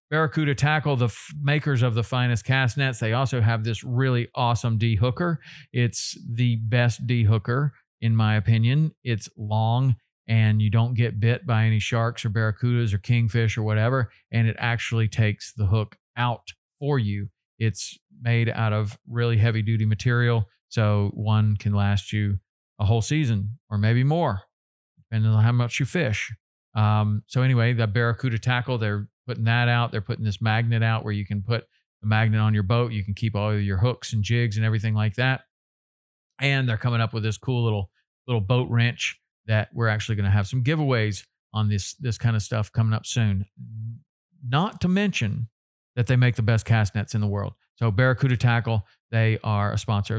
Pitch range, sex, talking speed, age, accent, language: 110-125 Hz, male, 190 wpm, 40-59, American, English